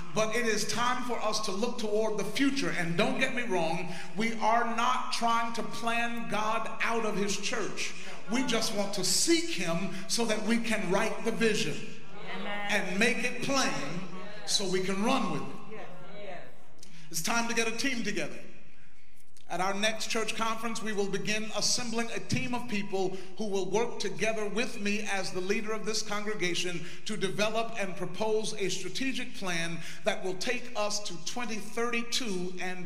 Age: 50-69